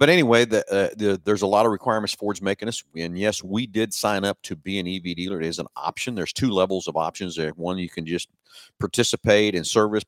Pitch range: 80-100 Hz